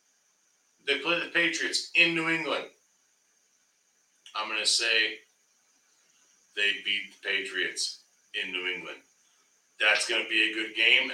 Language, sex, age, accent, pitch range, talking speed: English, male, 40-59, American, 150-230 Hz, 135 wpm